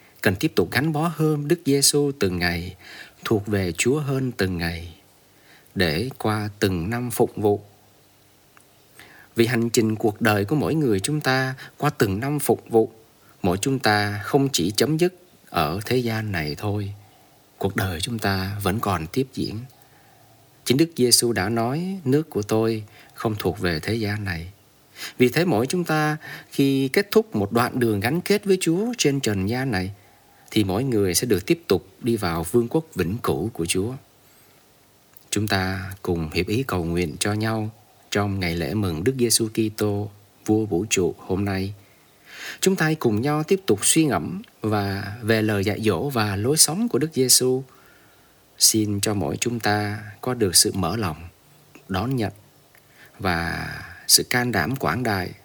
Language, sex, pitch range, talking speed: Vietnamese, male, 100-135 Hz, 175 wpm